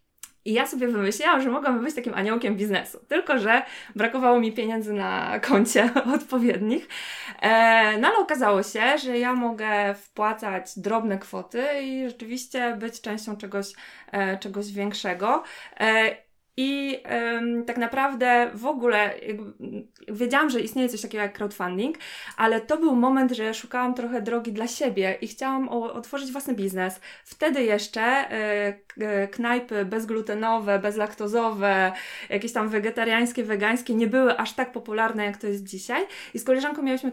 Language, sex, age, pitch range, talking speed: Polish, female, 20-39, 205-250 Hz, 135 wpm